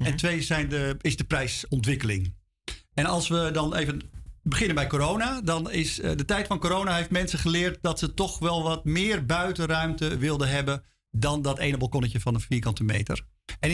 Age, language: 50-69, Dutch